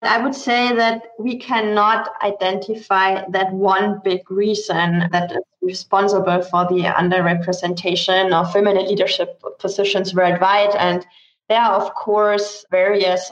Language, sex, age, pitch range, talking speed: English, female, 20-39, 185-215 Hz, 125 wpm